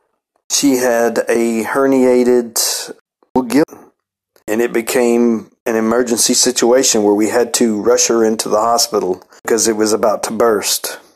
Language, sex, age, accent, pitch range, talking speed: English, male, 40-59, American, 115-140 Hz, 140 wpm